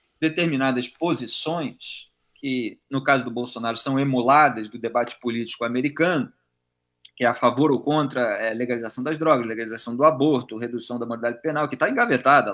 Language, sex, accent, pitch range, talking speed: Portuguese, male, Brazilian, 120-200 Hz, 165 wpm